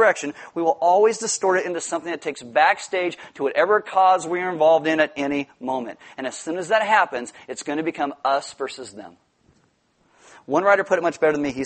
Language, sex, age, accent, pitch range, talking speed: English, male, 30-49, American, 140-170 Hz, 215 wpm